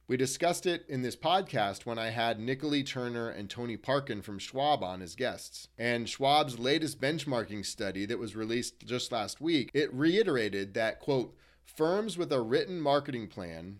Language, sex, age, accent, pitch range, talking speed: English, male, 30-49, American, 110-145 Hz, 175 wpm